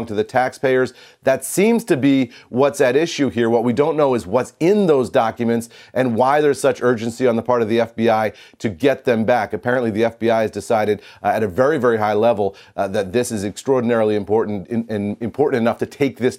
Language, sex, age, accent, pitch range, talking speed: English, male, 40-59, American, 110-130 Hz, 215 wpm